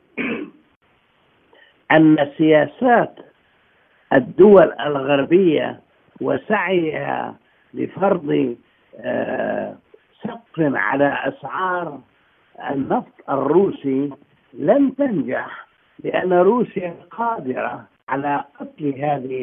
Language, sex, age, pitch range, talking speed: Arabic, male, 60-79, 145-200 Hz, 60 wpm